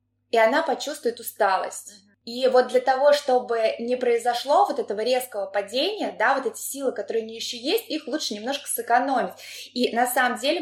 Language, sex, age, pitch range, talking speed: Russian, female, 20-39, 205-260 Hz, 180 wpm